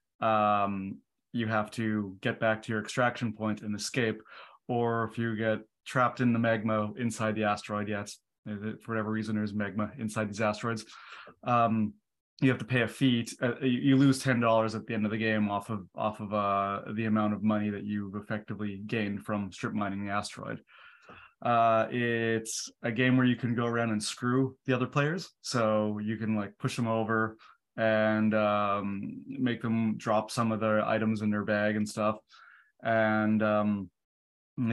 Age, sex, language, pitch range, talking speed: 20-39, male, English, 105-120 Hz, 185 wpm